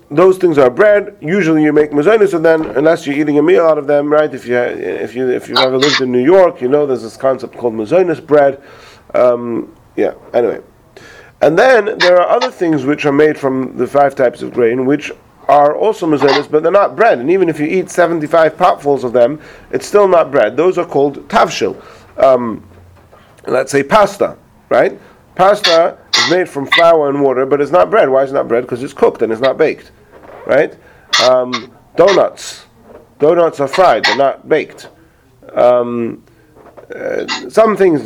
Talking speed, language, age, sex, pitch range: 190 wpm, English, 40-59, male, 130-170 Hz